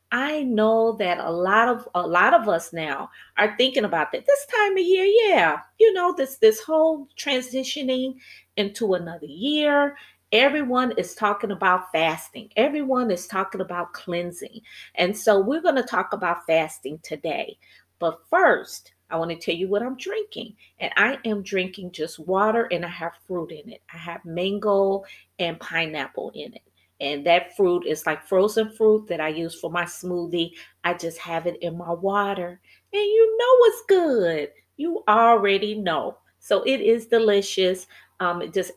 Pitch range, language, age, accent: 175-255 Hz, English, 30-49, American